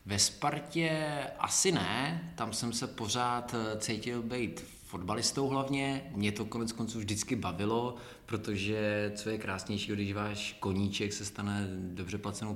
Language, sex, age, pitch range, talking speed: Czech, male, 20-39, 100-115 Hz, 140 wpm